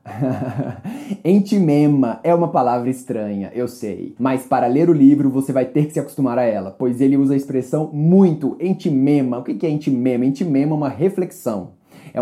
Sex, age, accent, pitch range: male, 20-39, Brazilian, 140-195 Hz